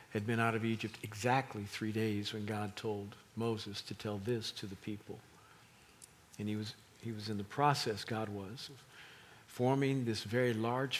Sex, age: male, 50-69